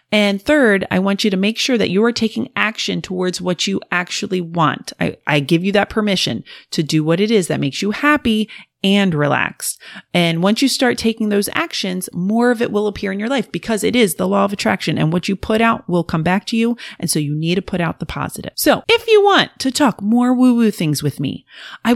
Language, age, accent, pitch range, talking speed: English, 30-49, American, 175-240 Hz, 245 wpm